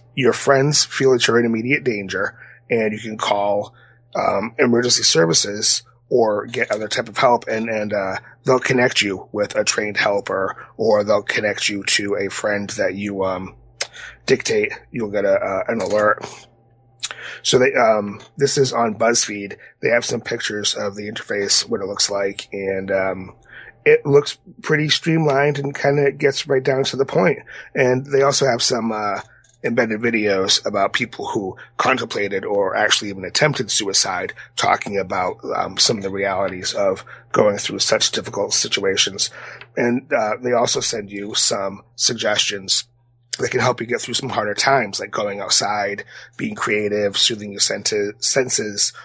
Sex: male